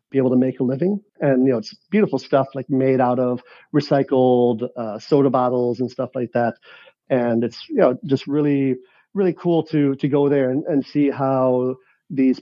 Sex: male